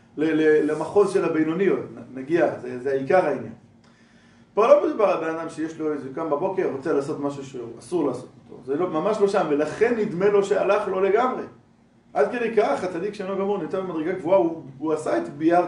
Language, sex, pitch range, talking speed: Hebrew, male, 145-225 Hz, 190 wpm